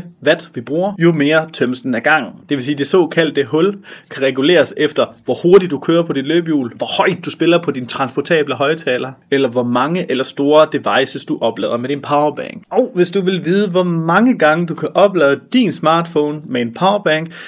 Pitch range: 135-180 Hz